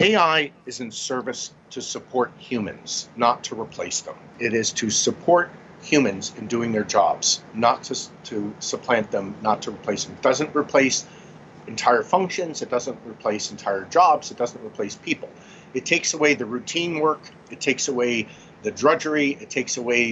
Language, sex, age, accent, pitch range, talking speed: English, male, 50-69, American, 125-155 Hz, 170 wpm